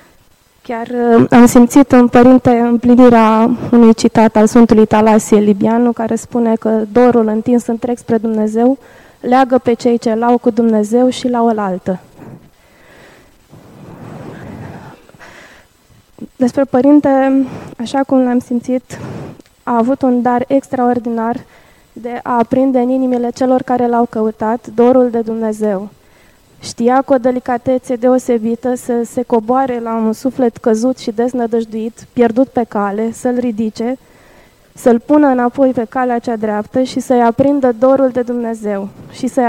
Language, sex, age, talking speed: Romanian, female, 20-39, 135 wpm